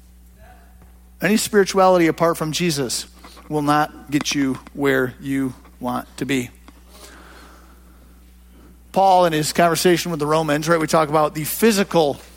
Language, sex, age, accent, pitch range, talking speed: English, male, 50-69, American, 135-200 Hz, 130 wpm